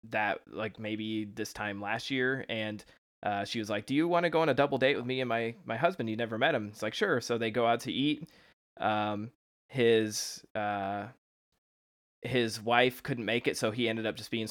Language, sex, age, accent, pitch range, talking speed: English, male, 20-39, American, 110-125 Hz, 225 wpm